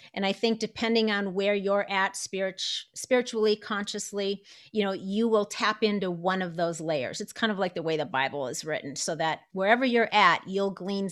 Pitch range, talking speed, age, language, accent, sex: 175-215 Hz, 200 wpm, 40-59, English, American, female